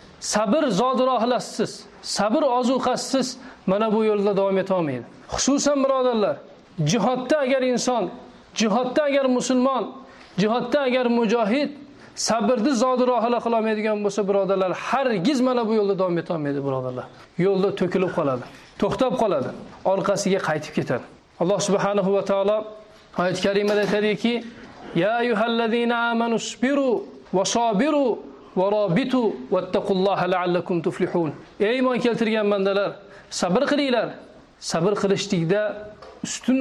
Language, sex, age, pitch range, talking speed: English, male, 40-59, 190-245 Hz, 125 wpm